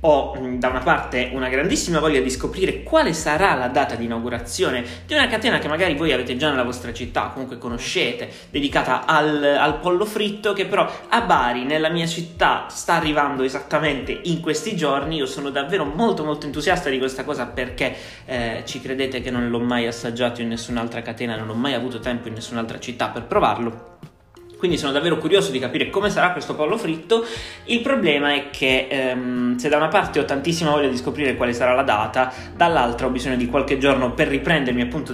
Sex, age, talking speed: male, 20-39, 195 wpm